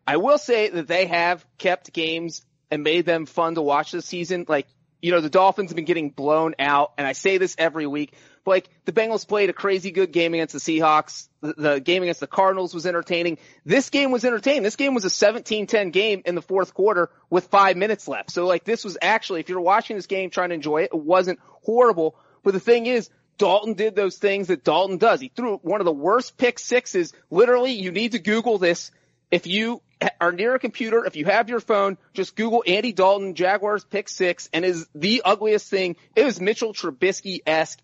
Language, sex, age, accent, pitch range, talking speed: English, male, 30-49, American, 165-210 Hz, 220 wpm